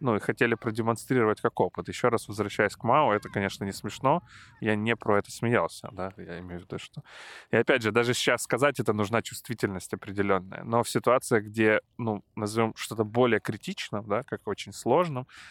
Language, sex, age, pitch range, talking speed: Ukrainian, male, 20-39, 100-120 Hz, 190 wpm